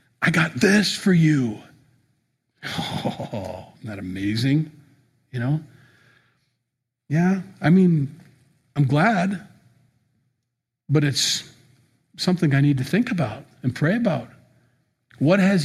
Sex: male